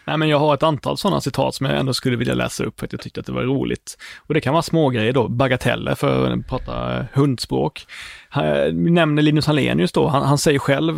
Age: 30-49